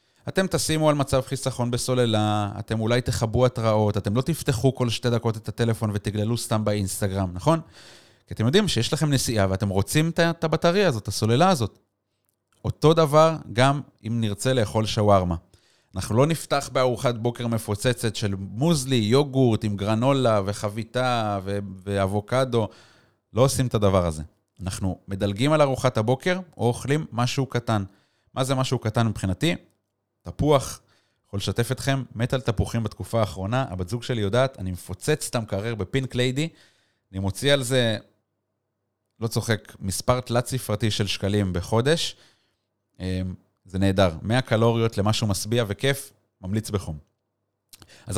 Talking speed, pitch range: 145 wpm, 105-130 Hz